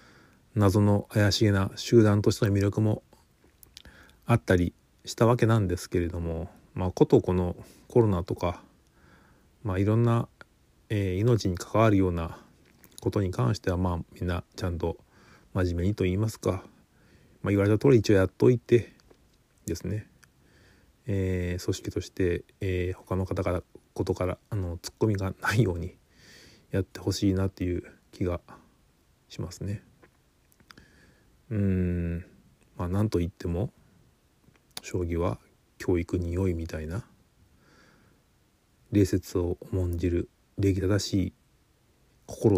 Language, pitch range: Japanese, 90-105 Hz